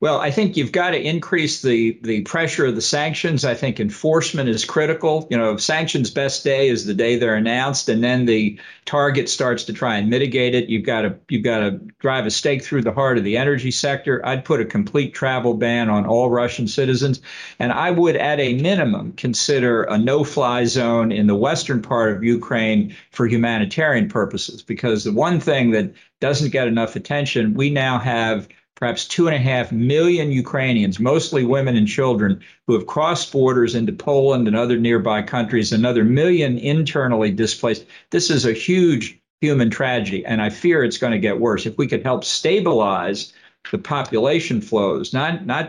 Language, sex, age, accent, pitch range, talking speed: English, male, 50-69, American, 115-145 Hz, 190 wpm